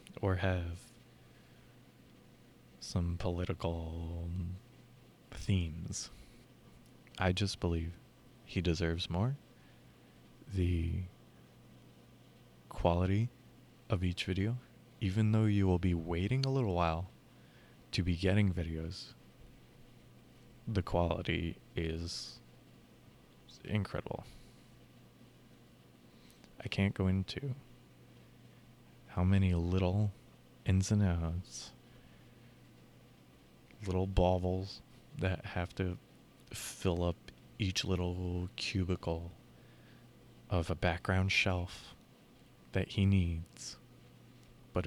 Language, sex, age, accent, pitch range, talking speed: English, male, 20-39, American, 85-105 Hz, 80 wpm